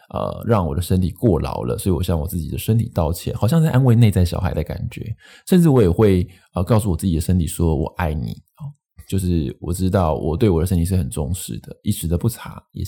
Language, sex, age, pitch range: Chinese, male, 20-39, 85-110 Hz